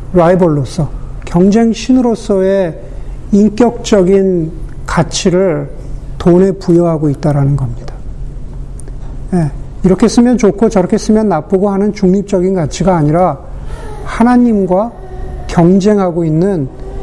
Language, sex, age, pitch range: Korean, male, 50-69, 155-205 Hz